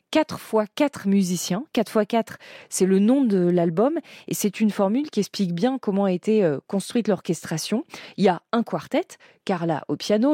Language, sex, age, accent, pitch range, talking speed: French, female, 20-39, French, 175-235 Hz, 175 wpm